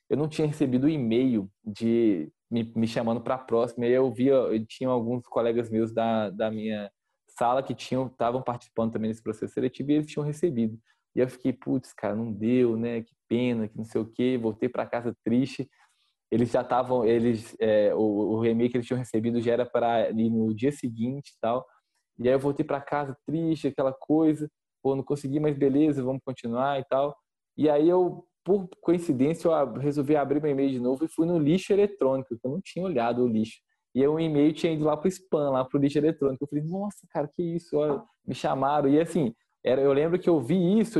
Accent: Brazilian